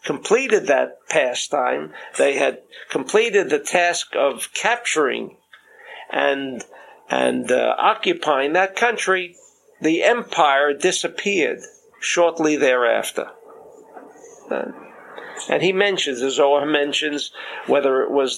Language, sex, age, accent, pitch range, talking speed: English, male, 50-69, American, 150-220 Hz, 100 wpm